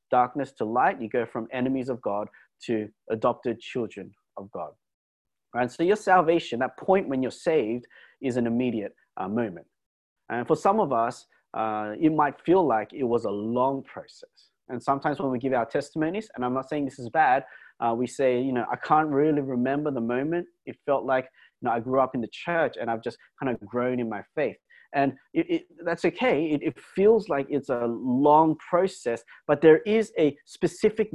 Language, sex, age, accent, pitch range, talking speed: English, male, 30-49, Australian, 120-155 Hz, 205 wpm